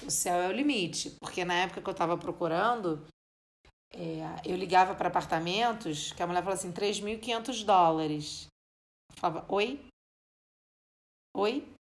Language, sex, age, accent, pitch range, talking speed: Portuguese, female, 40-59, Brazilian, 160-210 Hz, 140 wpm